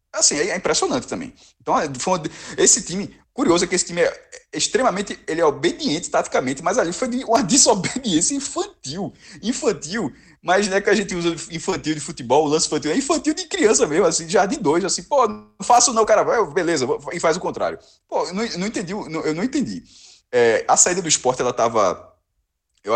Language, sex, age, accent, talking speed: Portuguese, male, 20-39, Brazilian, 205 wpm